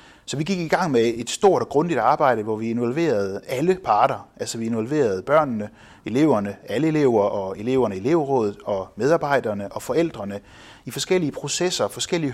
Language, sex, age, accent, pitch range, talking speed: Danish, male, 30-49, native, 110-155 Hz, 170 wpm